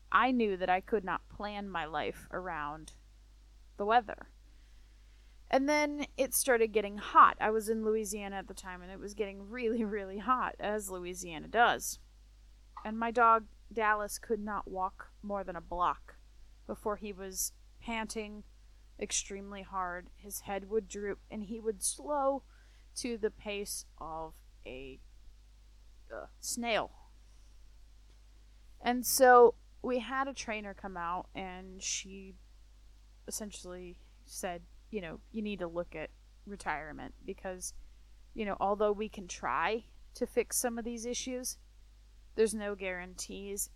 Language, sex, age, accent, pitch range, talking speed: English, female, 20-39, American, 180-225 Hz, 140 wpm